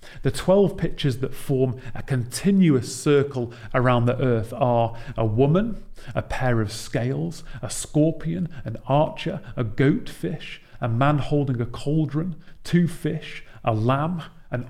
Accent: British